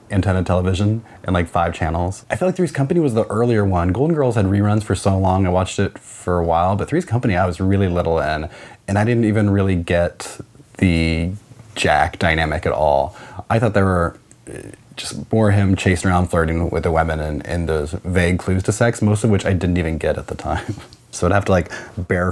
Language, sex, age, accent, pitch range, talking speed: English, male, 30-49, American, 85-110 Hz, 225 wpm